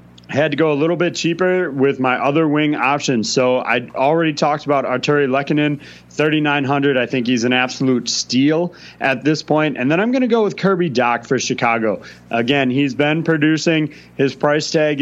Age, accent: 30-49, American